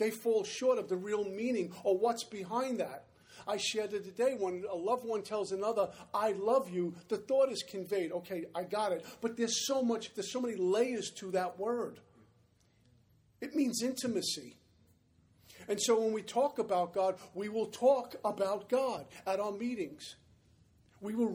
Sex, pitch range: male, 190-230 Hz